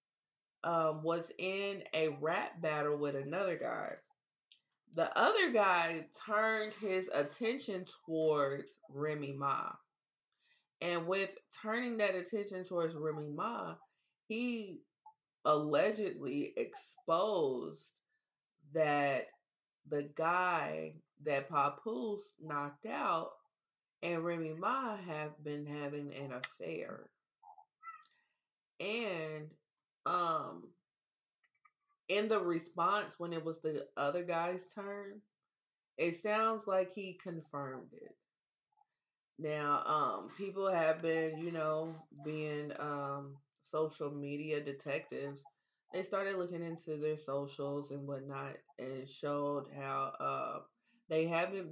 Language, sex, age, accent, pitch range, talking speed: English, female, 20-39, American, 145-195 Hz, 100 wpm